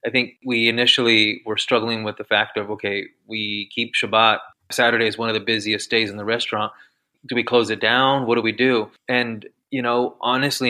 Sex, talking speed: male, 205 wpm